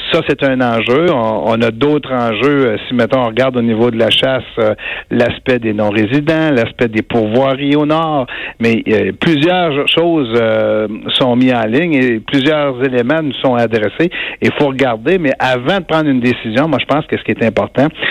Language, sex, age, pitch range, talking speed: French, male, 60-79, 115-140 Hz, 195 wpm